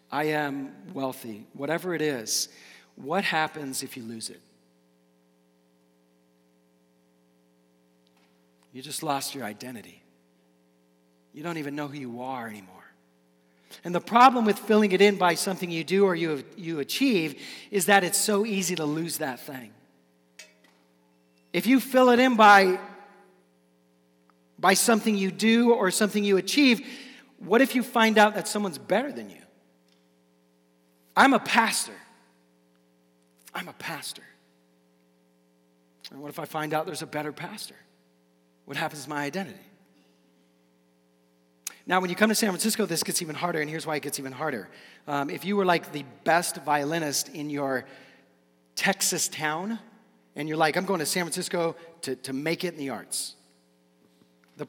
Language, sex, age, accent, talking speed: English, male, 40-59, American, 155 wpm